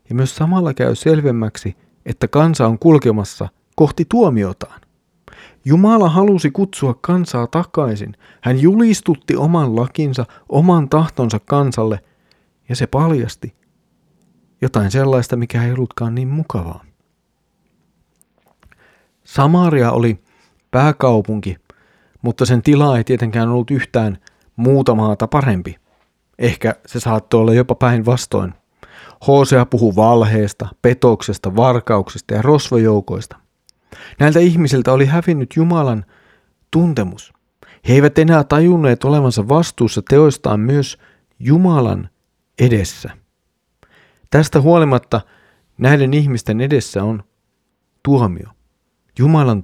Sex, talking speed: male, 100 wpm